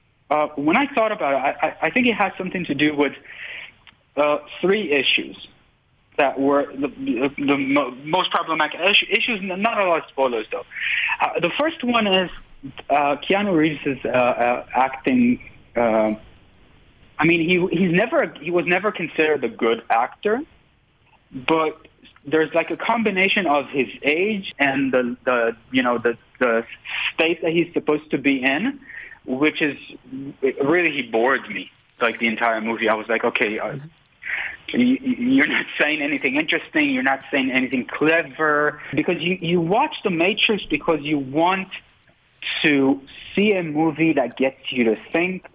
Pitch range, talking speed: 135-190 Hz, 165 wpm